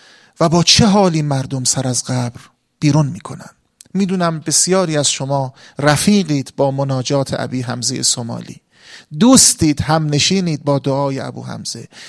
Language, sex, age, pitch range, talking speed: Persian, male, 40-59, 140-190 Hz, 135 wpm